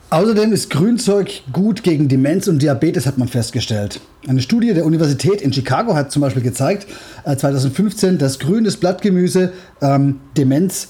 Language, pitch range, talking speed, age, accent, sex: German, 140-195 Hz, 150 wpm, 30-49, German, male